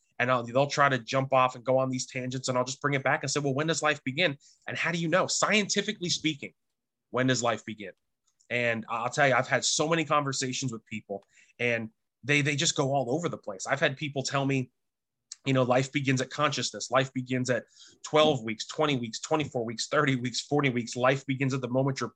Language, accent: English, American